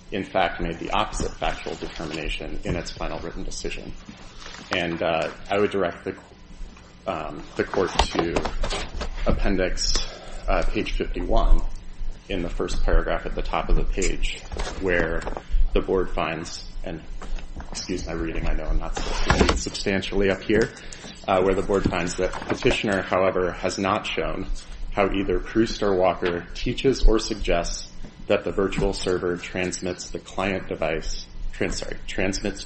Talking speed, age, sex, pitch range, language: 145 wpm, 30-49, male, 85-100 Hz, English